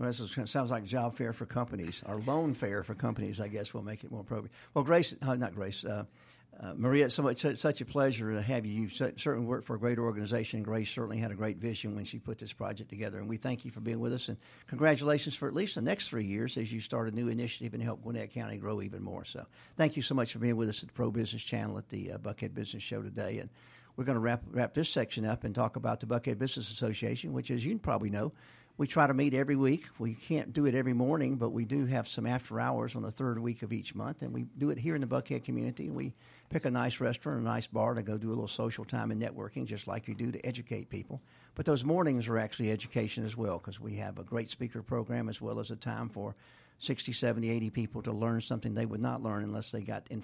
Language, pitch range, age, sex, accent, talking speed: English, 110-125 Hz, 50-69, male, American, 265 wpm